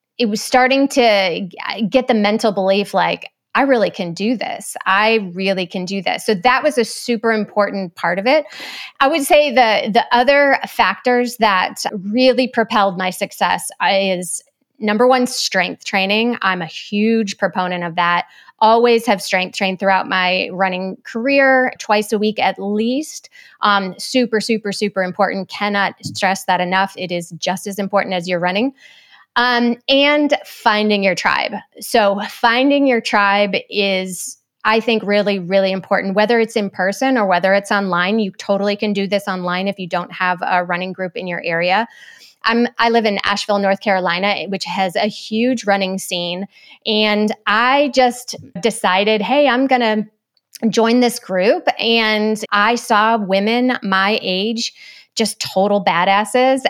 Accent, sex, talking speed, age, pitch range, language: American, female, 160 wpm, 20-39, 190-235 Hz, English